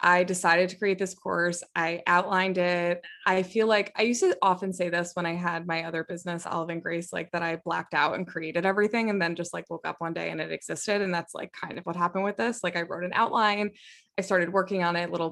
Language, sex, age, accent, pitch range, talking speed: English, female, 20-39, American, 170-205 Hz, 260 wpm